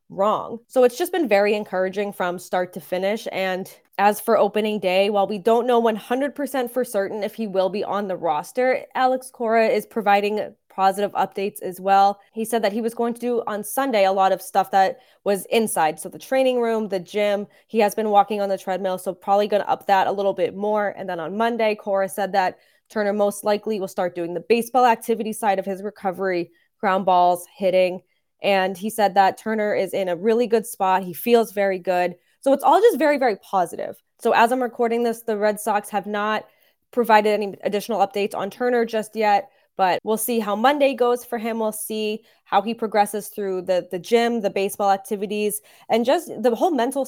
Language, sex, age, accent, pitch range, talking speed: English, female, 20-39, American, 190-230 Hz, 210 wpm